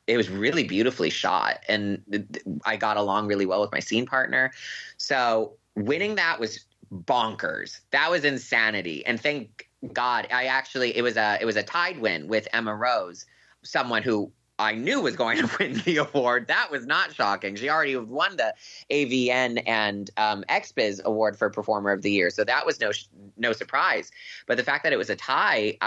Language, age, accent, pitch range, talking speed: English, 20-39, American, 105-130 Hz, 190 wpm